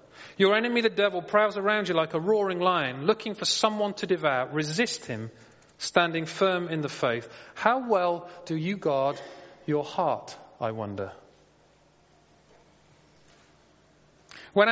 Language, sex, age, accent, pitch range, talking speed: English, male, 40-59, British, 140-190 Hz, 135 wpm